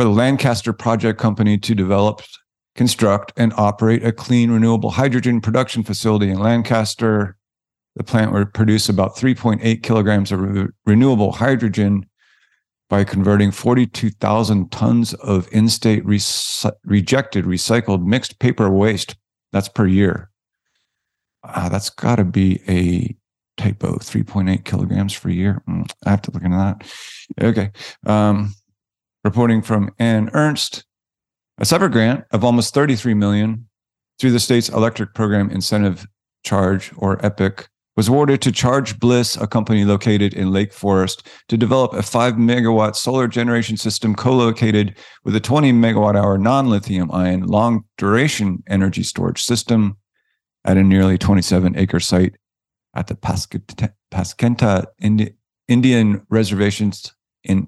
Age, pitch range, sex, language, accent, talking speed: 50-69, 100-115 Hz, male, English, American, 125 wpm